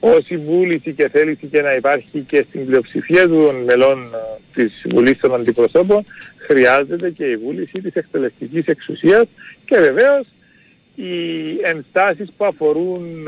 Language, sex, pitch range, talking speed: Greek, male, 135-180 Hz, 130 wpm